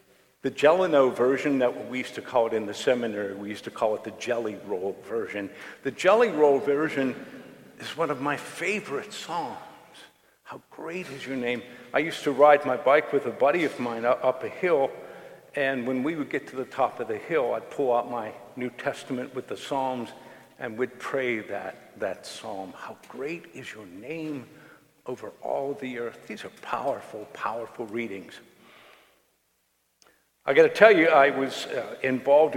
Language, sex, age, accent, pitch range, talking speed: English, male, 50-69, American, 120-155 Hz, 180 wpm